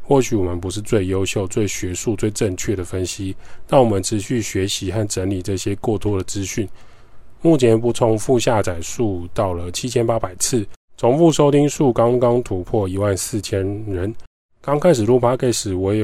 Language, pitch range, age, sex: Chinese, 95-120 Hz, 20-39, male